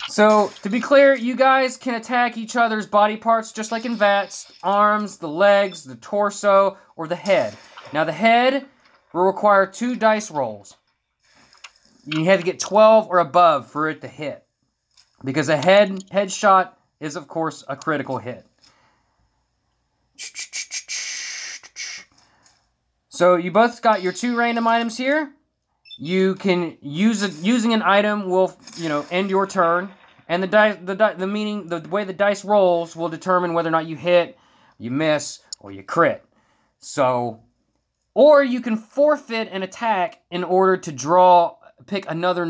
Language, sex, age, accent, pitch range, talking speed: English, male, 20-39, American, 170-220 Hz, 160 wpm